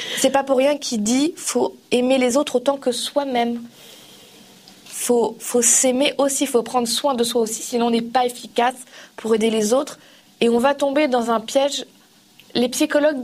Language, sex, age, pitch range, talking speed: French, female, 20-39, 230-275 Hz, 200 wpm